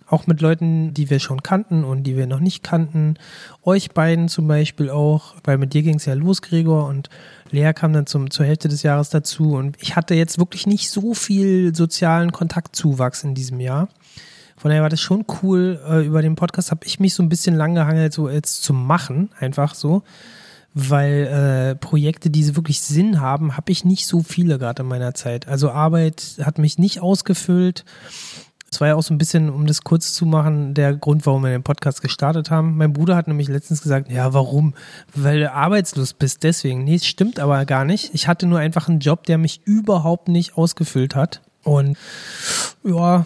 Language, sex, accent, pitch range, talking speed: German, male, German, 145-170 Hz, 205 wpm